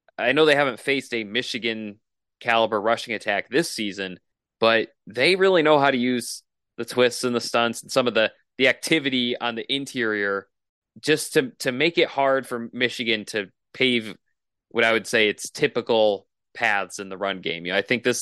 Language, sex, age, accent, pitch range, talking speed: English, male, 20-39, American, 110-135 Hz, 190 wpm